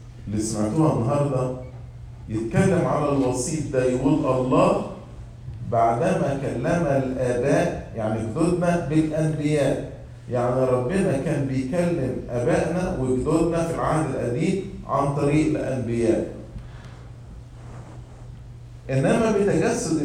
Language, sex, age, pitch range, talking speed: English, male, 50-69, 120-155 Hz, 85 wpm